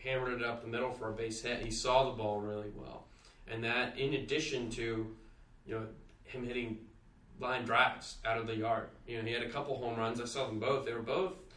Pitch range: 110-125 Hz